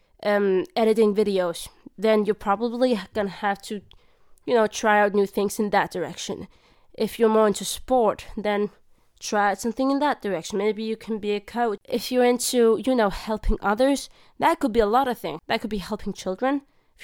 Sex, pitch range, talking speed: female, 195-230 Hz, 195 wpm